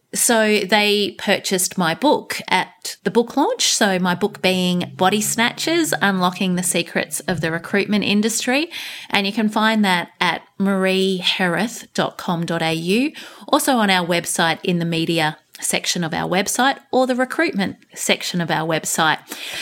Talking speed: 145 wpm